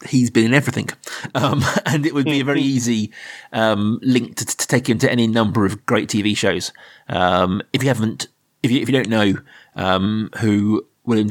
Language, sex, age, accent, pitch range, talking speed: English, male, 30-49, British, 105-125 Hz, 195 wpm